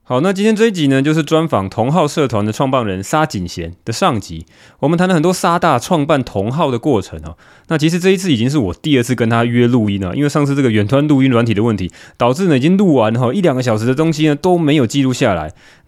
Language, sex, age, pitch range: Chinese, male, 20-39, 110-165 Hz